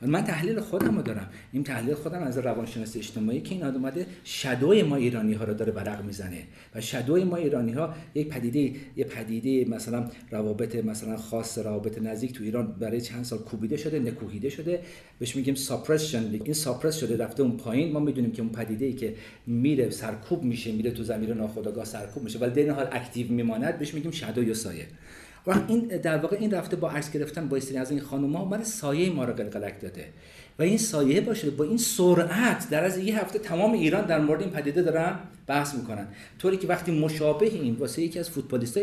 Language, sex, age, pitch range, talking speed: Persian, male, 50-69, 115-155 Hz, 195 wpm